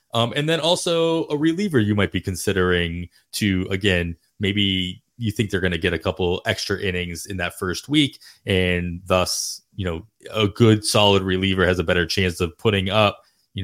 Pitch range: 90-110 Hz